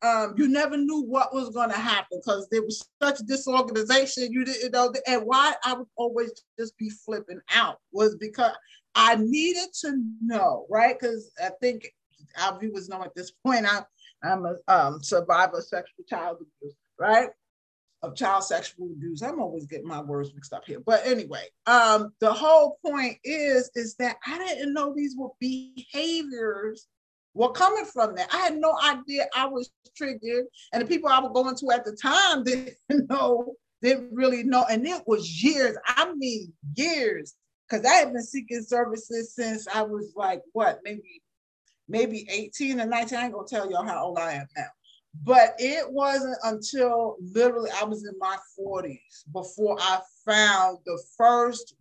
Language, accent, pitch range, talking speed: English, American, 210-265 Hz, 175 wpm